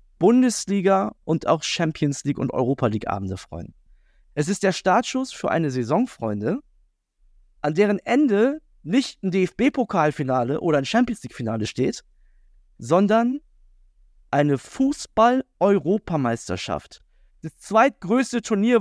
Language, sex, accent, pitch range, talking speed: German, male, German, 135-225 Hz, 110 wpm